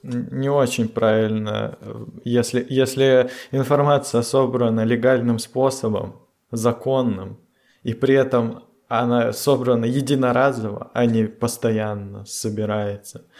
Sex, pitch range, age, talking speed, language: male, 115-130 Hz, 20-39, 90 wpm, Russian